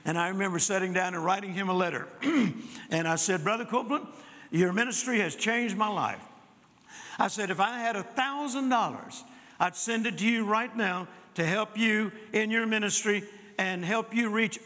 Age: 60-79